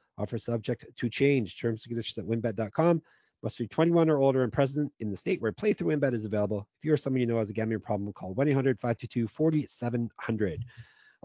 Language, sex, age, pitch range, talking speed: English, male, 30-49, 110-135 Hz, 190 wpm